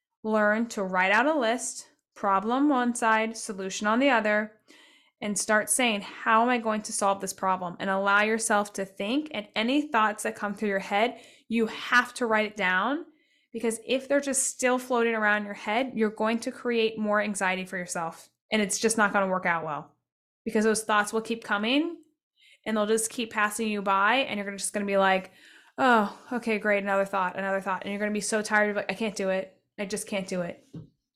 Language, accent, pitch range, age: English, American, 205-255 Hz, 10-29